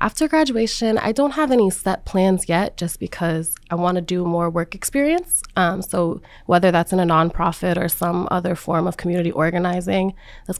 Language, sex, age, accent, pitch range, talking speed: English, female, 20-39, American, 170-190 Hz, 185 wpm